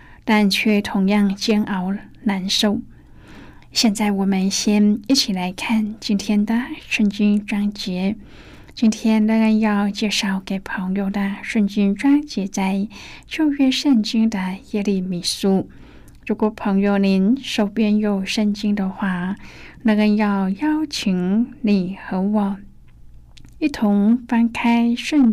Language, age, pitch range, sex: Chinese, 10-29, 195-225 Hz, female